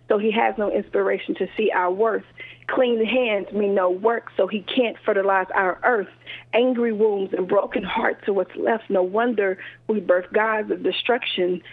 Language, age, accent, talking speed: English, 40-59, American, 180 wpm